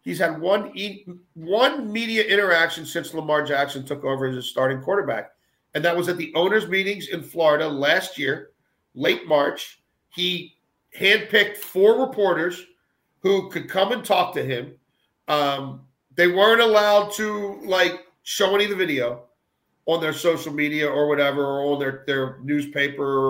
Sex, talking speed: male, 155 wpm